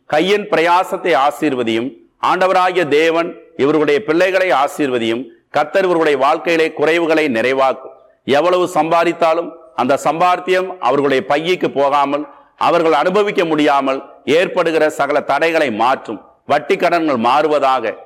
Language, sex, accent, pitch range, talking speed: Tamil, male, native, 145-185 Hz, 100 wpm